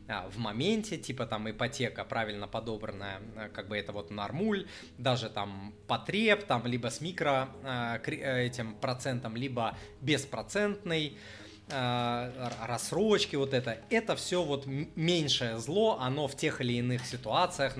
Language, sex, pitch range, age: Russian, male, 110-140 Hz, 20-39